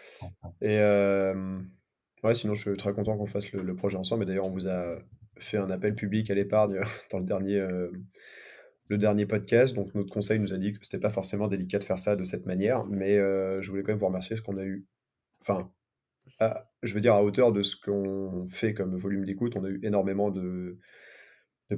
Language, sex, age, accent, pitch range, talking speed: French, male, 20-39, French, 95-110 Hz, 220 wpm